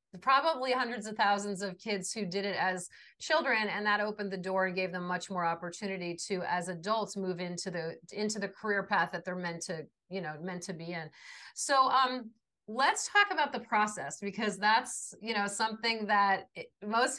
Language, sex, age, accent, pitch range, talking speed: English, female, 30-49, American, 190-230 Hz, 195 wpm